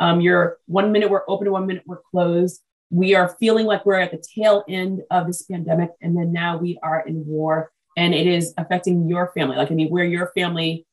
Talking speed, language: 225 wpm, English